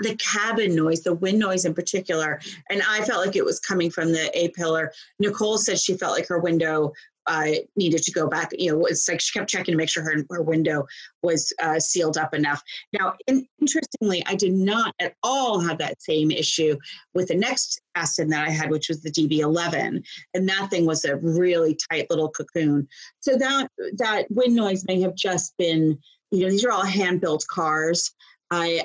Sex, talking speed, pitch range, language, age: female, 205 wpm, 165-210 Hz, English, 30-49